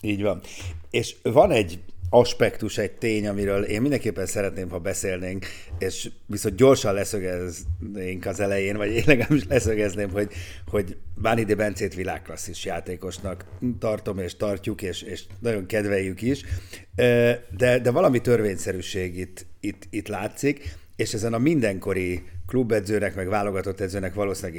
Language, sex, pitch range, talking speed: Hungarian, male, 90-115 Hz, 135 wpm